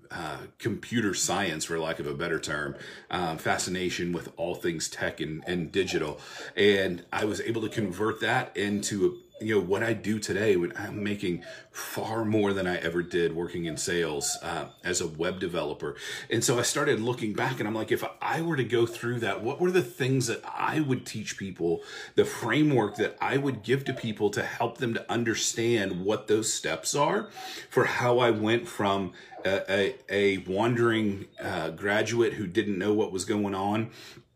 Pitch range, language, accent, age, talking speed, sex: 100-120 Hz, English, American, 40-59, 190 wpm, male